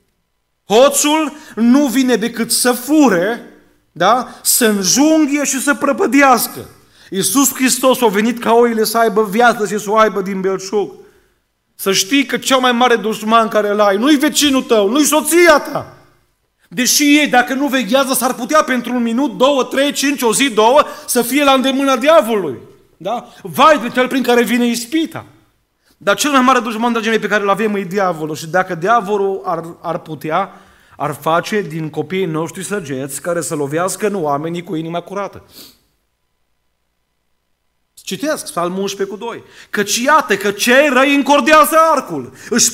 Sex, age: male, 30-49